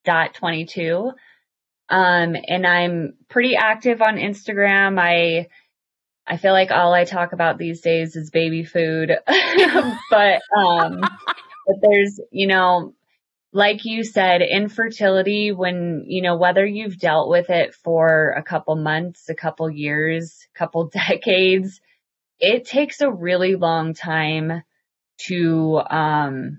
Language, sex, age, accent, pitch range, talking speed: English, female, 20-39, American, 160-195 Hz, 130 wpm